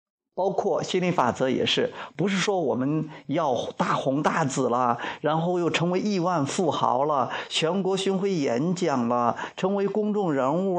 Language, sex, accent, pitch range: Chinese, male, native, 145-215 Hz